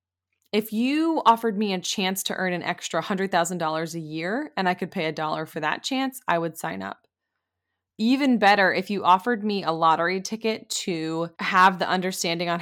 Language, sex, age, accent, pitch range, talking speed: English, female, 20-39, American, 155-195 Hz, 190 wpm